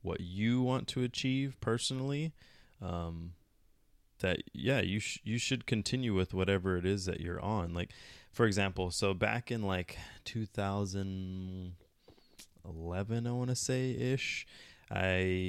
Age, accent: 20-39, American